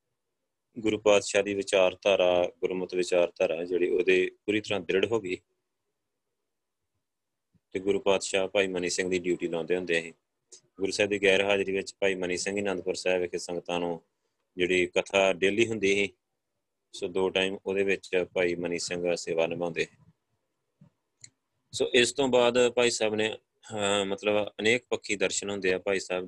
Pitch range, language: 90-105 Hz, Punjabi